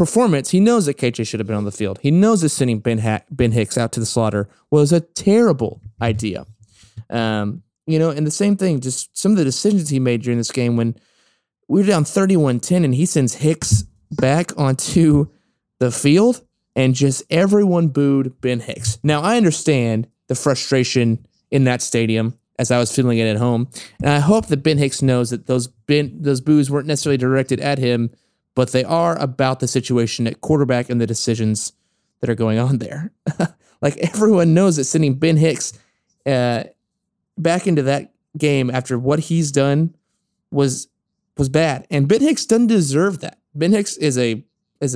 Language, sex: English, male